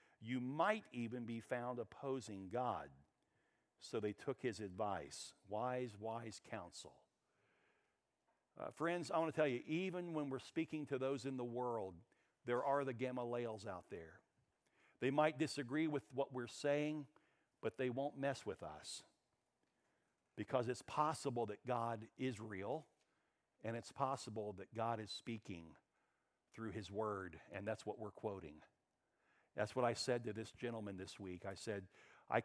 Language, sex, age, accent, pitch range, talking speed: English, male, 50-69, American, 105-130 Hz, 155 wpm